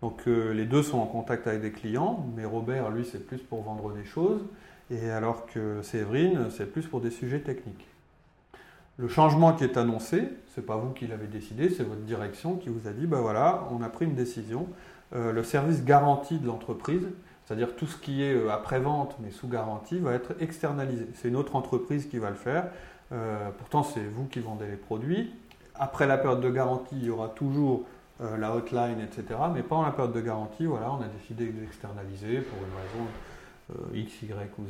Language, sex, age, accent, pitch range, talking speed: French, male, 30-49, French, 110-140 Hz, 215 wpm